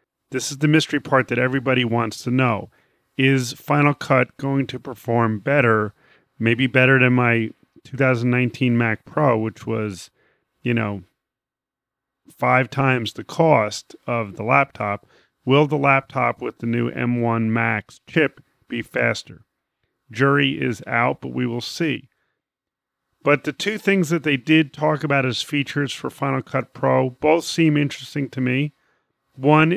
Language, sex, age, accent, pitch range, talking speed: English, male, 40-59, American, 120-145 Hz, 150 wpm